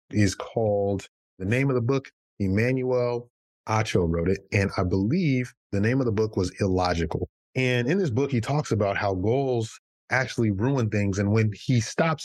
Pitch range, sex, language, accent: 100-120 Hz, male, English, American